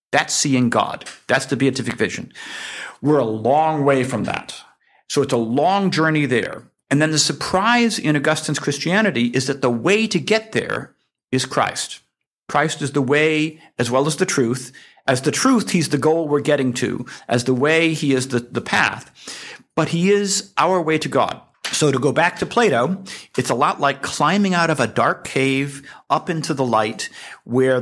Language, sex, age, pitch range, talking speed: English, male, 50-69, 130-170 Hz, 190 wpm